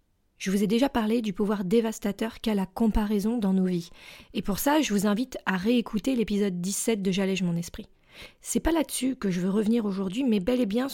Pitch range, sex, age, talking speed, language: 200-245 Hz, female, 20-39, 220 wpm, French